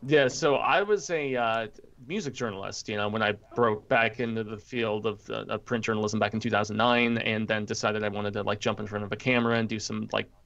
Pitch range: 110-125 Hz